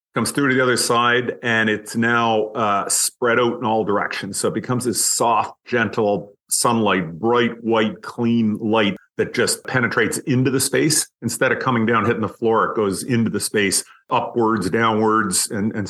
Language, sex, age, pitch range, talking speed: English, male, 40-59, 105-120 Hz, 180 wpm